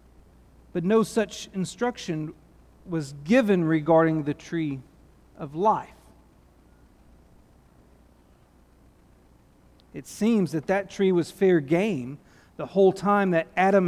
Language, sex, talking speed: English, male, 105 wpm